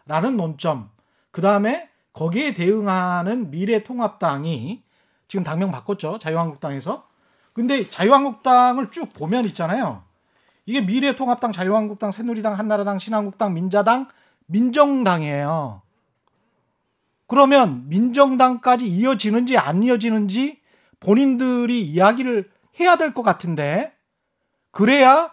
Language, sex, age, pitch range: Korean, male, 40-59, 185-255 Hz